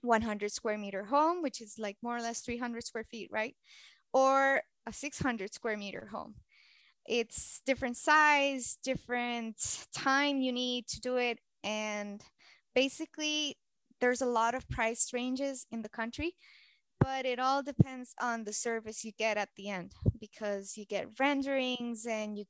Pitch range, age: 220-265 Hz, 20-39